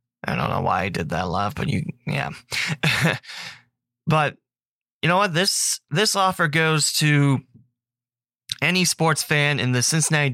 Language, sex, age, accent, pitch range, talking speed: English, male, 30-49, American, 125-155 Hz, 150 wpm